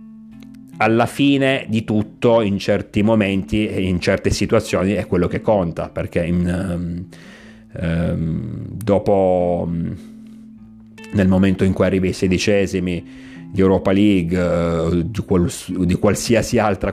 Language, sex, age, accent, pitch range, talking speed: Italian, male, 30-49, native, 90-110 Hz, 110 wpm